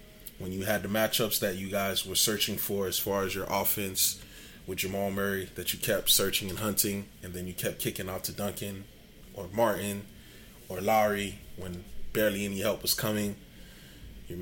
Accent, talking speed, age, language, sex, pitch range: American, 185 wpm, 20-39, English, male, 100-125 Hz